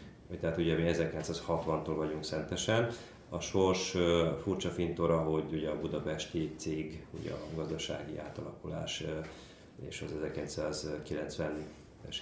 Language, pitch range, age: Hungarian, 75-85 Hz, 30-49